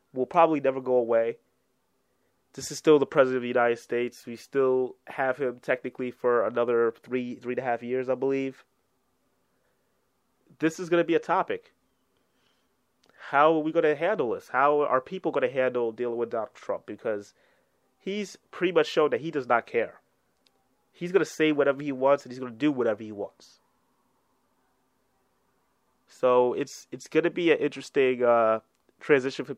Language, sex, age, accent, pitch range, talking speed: English, male, 20-39, American, 120-145 Hz, 180 wpm